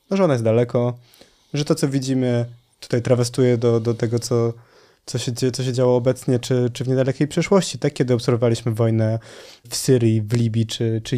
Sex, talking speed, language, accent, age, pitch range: male, 175 wpm, Polish, native, 20-39, 120-140 Hz